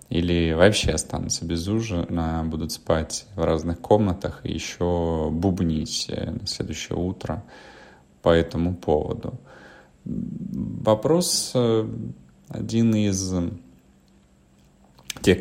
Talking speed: 90 wpm